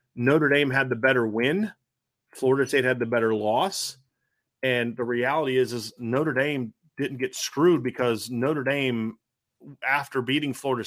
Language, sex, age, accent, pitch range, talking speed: English, male, 30-49, American, 120-140 Hz, 155 wpm